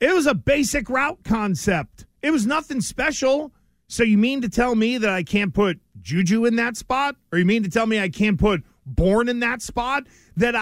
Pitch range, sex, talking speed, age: 200-260 Hz, male, 215 wpm, 40-59